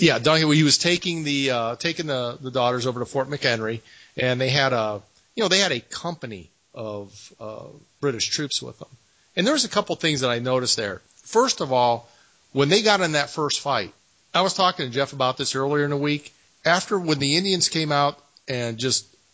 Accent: American